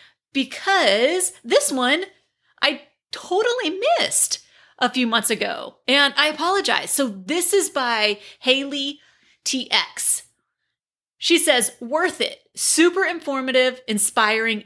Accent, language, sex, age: American, English, female, 30-49